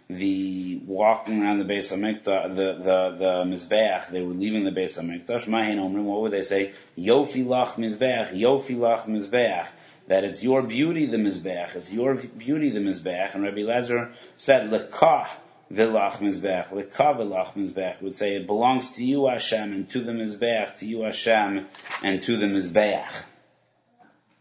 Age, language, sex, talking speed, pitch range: 30-49, English, male, 145 wpm, 95-115 Hz